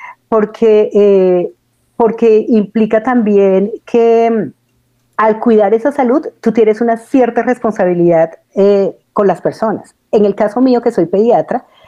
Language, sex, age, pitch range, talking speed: Spanish, female, 50-69, 195-235 Hz, 130 wpm